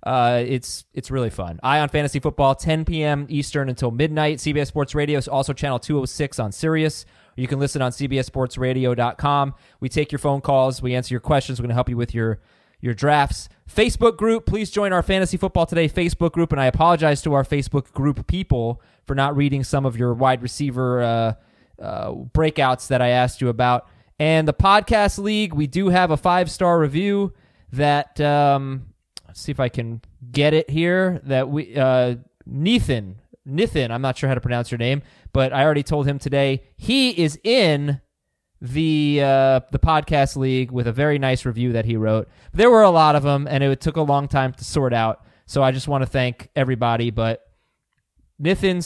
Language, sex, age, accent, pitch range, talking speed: English, male, 20-39, American, 125-155 Hz, 195 wpm